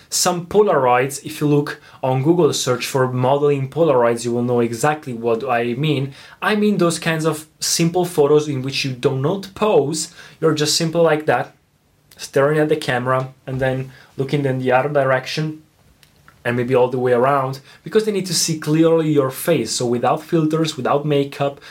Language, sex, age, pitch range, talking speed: Italian, male, 20-39, 130-155 Hz, 180 wpm